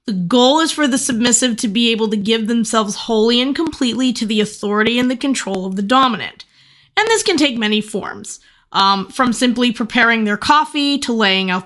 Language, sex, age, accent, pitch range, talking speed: English, female, 20-39, American, 190-240 Hz, 200 wpm